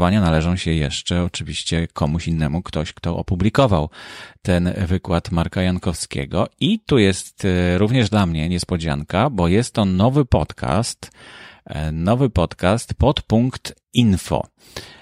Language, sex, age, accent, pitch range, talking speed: Polish, male, 30-49, native, 85-105 Hz, 120 wpm